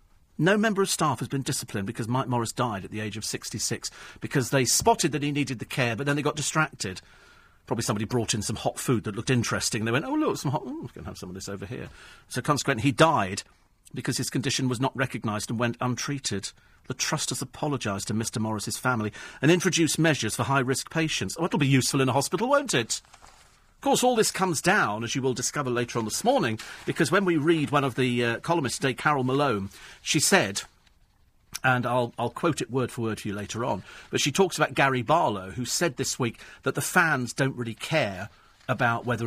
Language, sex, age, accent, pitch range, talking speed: English, male, 40-59, British, 115-155 Hz, 225 wpm